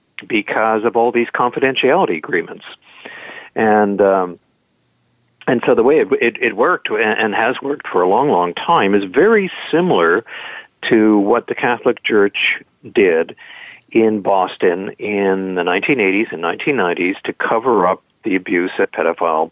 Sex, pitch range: male, 100-125 Hz